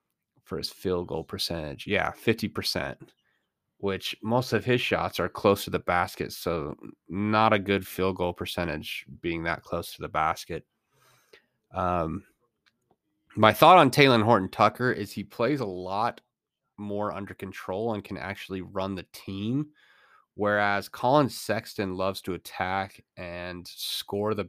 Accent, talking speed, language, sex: American, 150 wpm, English, male